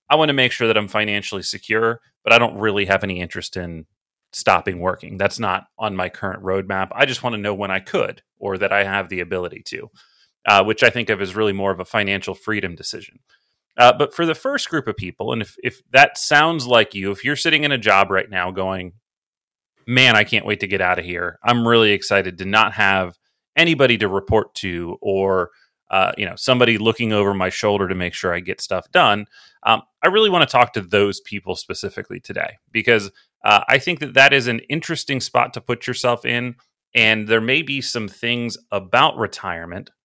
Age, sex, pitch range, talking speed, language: 30-49, male, 95-125 Hz, 215 wpm, English